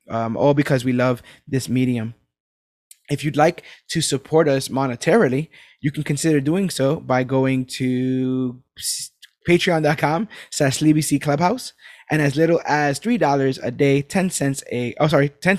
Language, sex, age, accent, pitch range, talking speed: English, male, 20-39, American, 130-155 Hz, 150 wpm